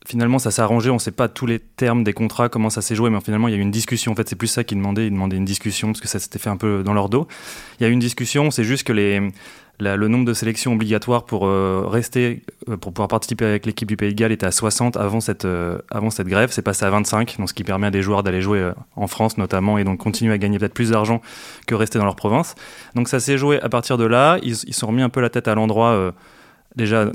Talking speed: 295 wpm